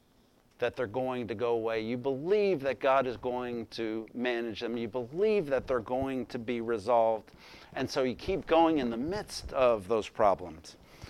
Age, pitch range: 50-69, 130-185 Hz